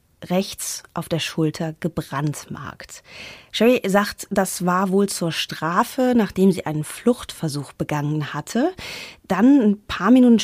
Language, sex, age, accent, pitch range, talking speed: German, female, 30-49, German, 160-205 Hz, 130 wpm